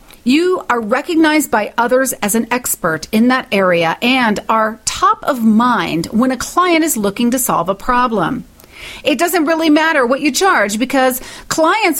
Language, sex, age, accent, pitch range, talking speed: English, female, 40-59, American, 210-300 Hz, 170 wpm